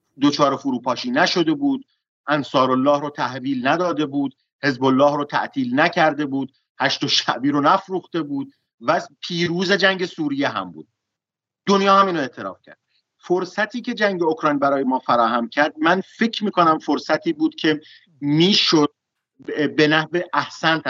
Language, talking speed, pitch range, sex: Persian, 145 wpm, 140-170 Hz, male